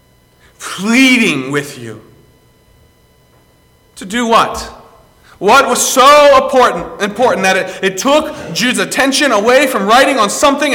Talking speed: 125 wpm